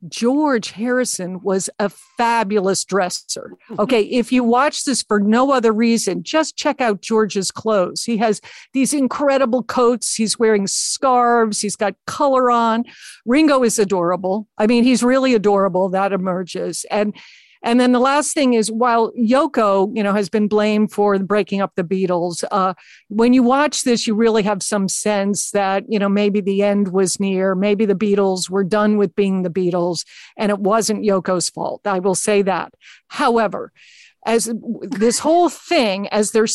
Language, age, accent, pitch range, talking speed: English, 50-69, American, 200-235 Hz, 170 wpm